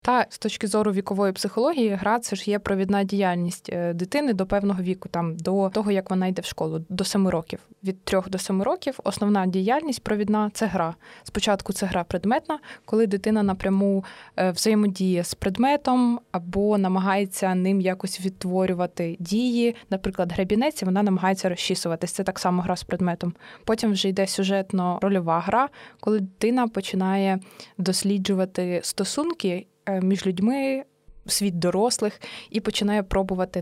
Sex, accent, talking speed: female, native, 150 wpm